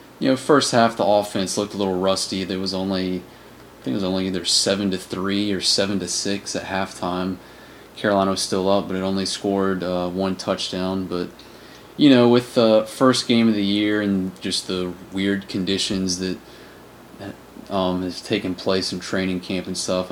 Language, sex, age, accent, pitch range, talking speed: English, male, 30-49, American, 95-105 Hz, 190 wpm